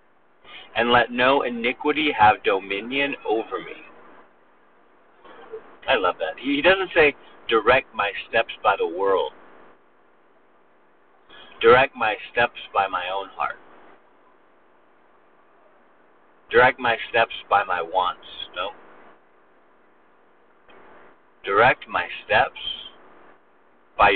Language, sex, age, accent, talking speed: English, male, 50-69, American, 95 wpm